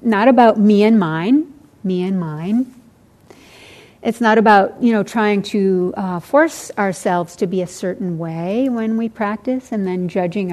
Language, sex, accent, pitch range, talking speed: English, female, American, 180-215 Hz, 165 wpm